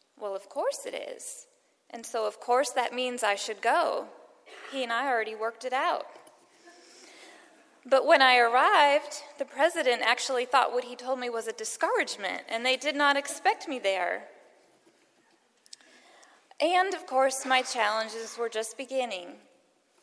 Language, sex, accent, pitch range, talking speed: English, female, American, 220-265 Hz, 155 wpm